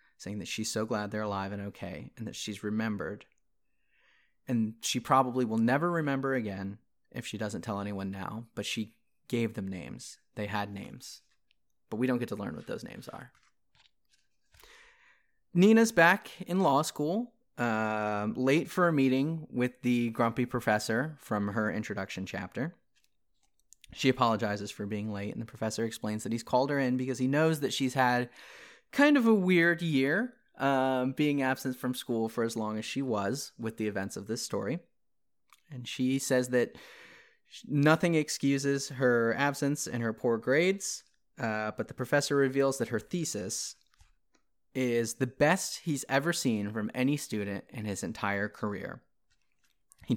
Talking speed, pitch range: 165 wpm, 105-140 Hz